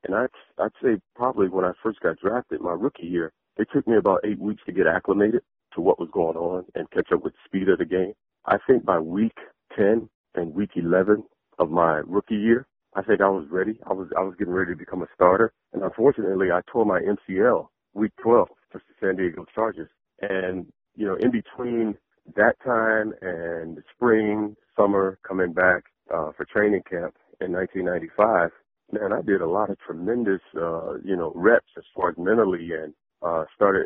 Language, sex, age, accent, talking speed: English, male, 40-59, American, 200 wpm